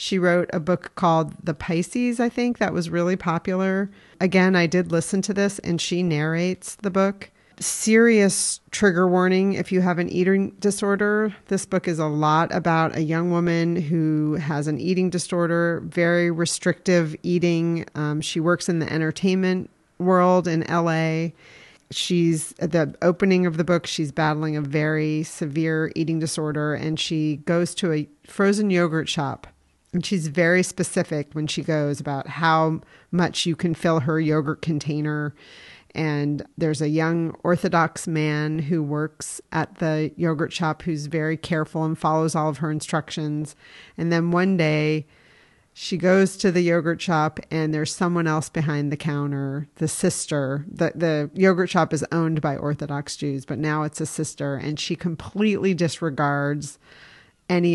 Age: 40-59